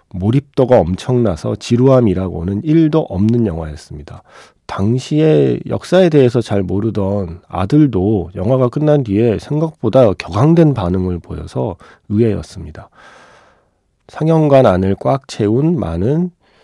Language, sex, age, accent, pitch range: Korean, male, 40-59, native, 90-130 Hz